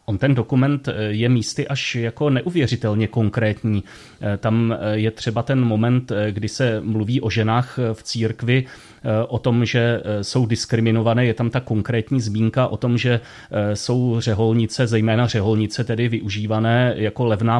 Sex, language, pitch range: male, Czech, 110-125 Hz